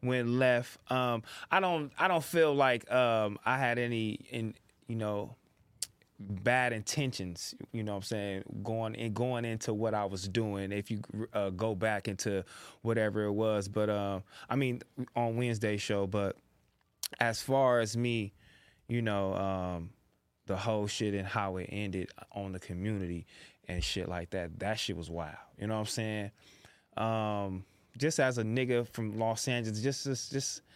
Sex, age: male, 20-39